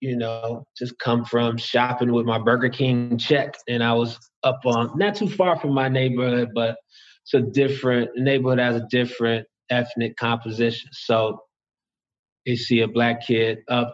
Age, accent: 20-39, American